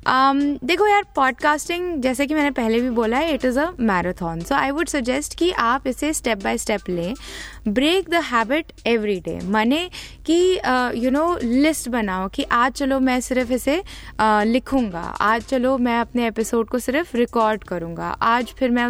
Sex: female